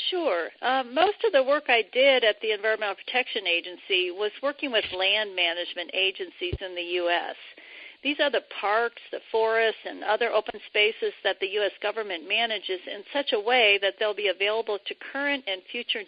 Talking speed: 185 wpm